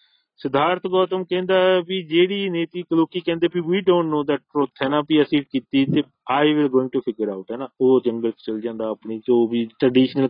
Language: Punjabi